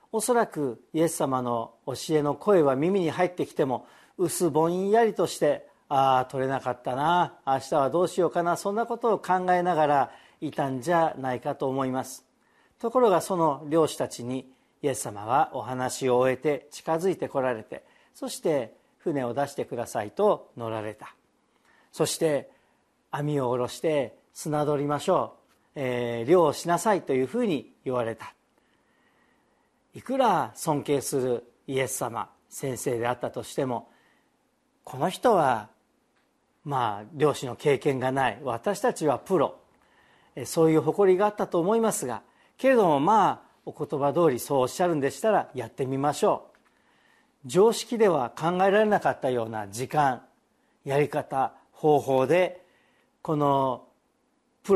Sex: male